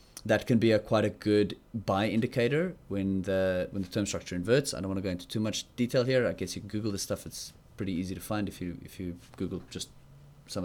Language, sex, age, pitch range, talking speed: English, male, 20-39, 95-120 Hz, 255 wpm